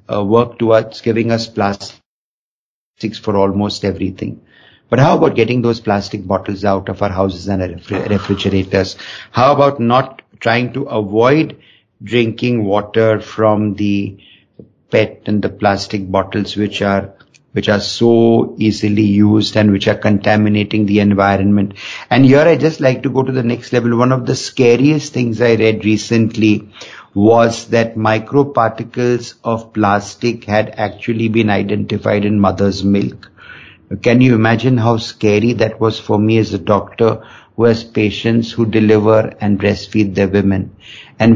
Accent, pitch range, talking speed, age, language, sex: native, 105-120 Hz, 150 wpm, 50-69, Hindi, male